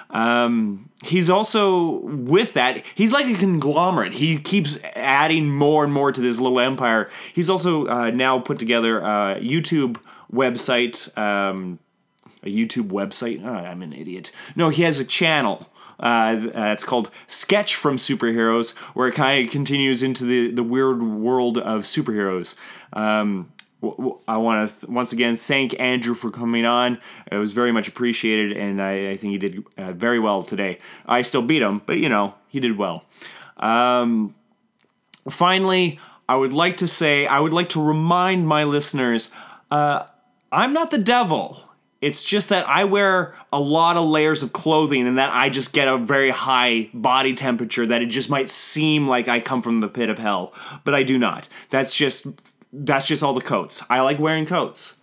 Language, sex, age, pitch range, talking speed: English, male, 20-39, 115-155 Hz, 175 wpm